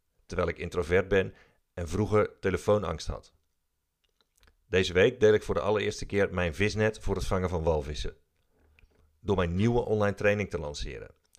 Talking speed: 160 wpm